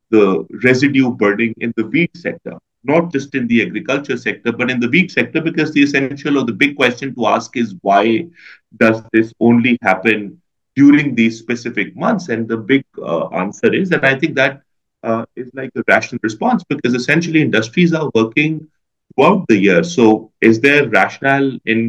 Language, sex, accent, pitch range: English, male, Indian, 115-145 Hz